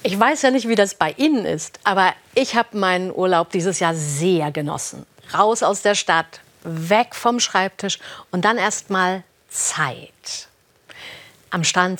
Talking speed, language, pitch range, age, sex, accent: 155 wpm, German, 180-240 Hz, 50-69, female, German